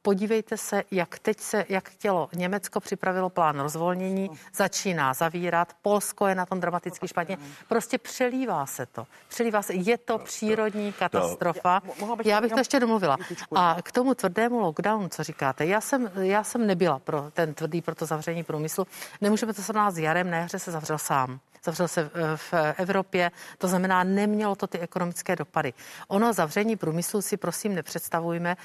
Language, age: Czech, 50-69